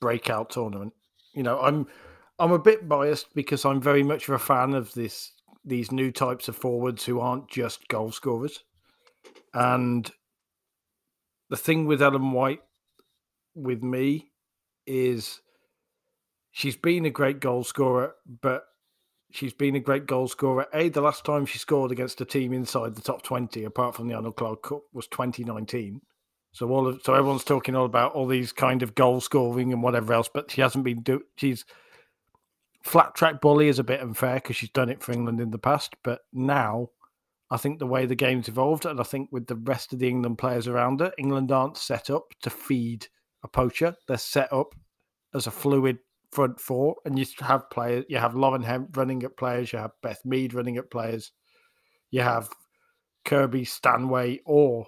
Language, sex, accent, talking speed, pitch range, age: English, male, British, 185 wpm, 120-140 Hz, 40-59